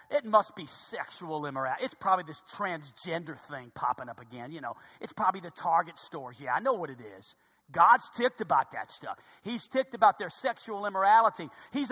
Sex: male